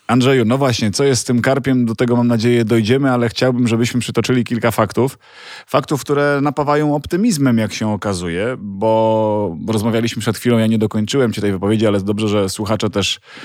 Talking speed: 185 wpm